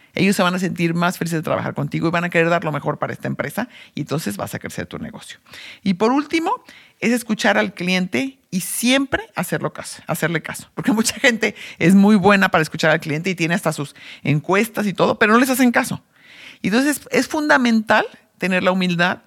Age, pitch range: 50-69, 165-210 Hz